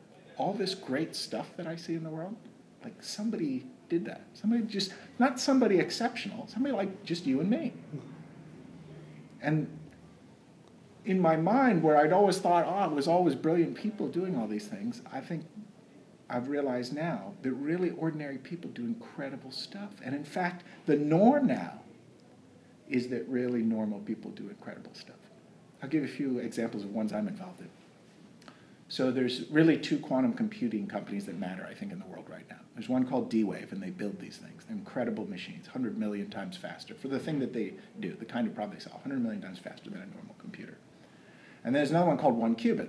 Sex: male